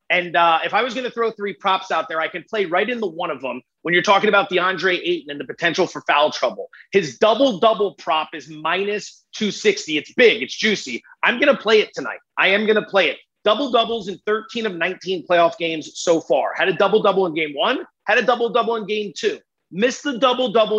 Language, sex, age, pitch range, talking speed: English, male, 30-49, 175-230 Hz, 230 wpm